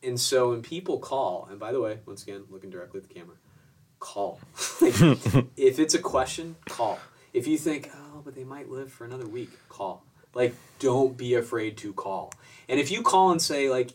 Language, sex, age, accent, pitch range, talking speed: English, male, 20-39, American, 115-160 Hz, 200 wpm